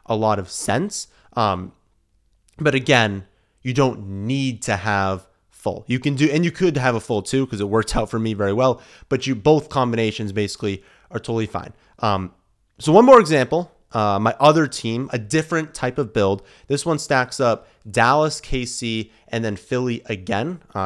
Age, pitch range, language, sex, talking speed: 30-49, 105-135 Hz, English, male, 185 wpm